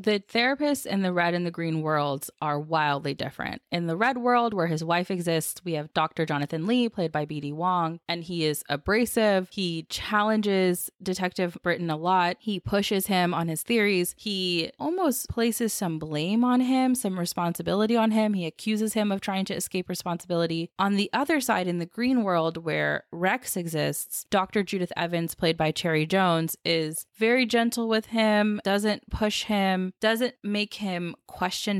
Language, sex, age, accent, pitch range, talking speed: English, female, 20-39, American, 160-205 Hz, 175 wpm